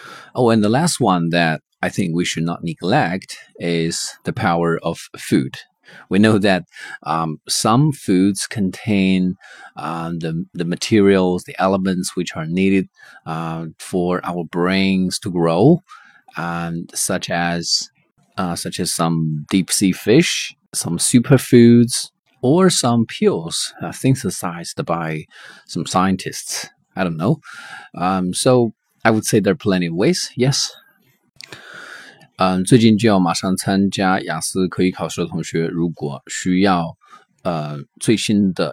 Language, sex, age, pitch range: Chinese, male, 30-49, 85-105 Hz